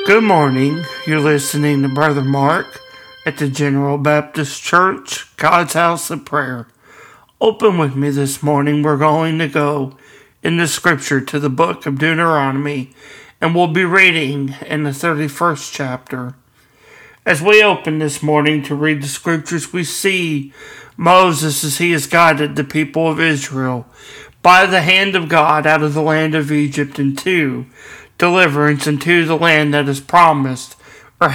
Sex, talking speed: male, 155 wpm